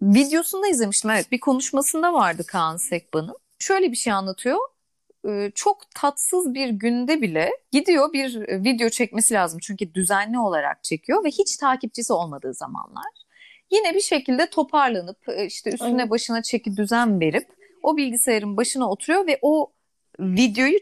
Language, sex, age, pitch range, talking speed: Turkish, female, 30-49, 205-290 Hz, 140 wpm